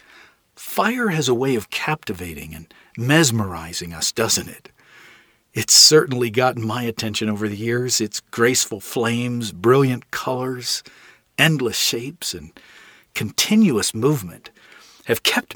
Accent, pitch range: American, 110-160 Hz